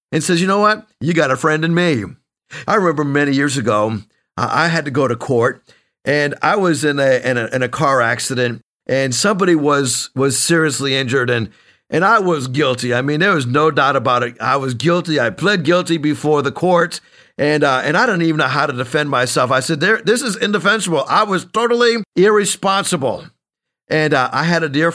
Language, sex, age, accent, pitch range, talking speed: English, male, 50-69, American, 135-175 Hz, 210 wpm